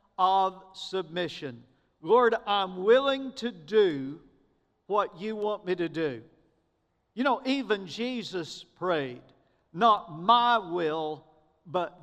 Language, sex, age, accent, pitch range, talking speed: English, male, 50-69, American, 170-225 Hz, 110 wpm